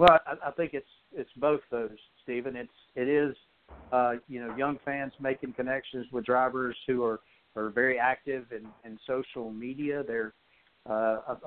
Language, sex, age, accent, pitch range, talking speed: English, male, 50-69, American, 120-140 Hz, 165 wpm